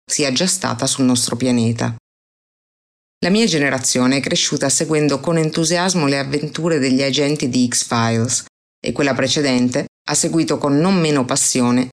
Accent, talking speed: native, 145 wpm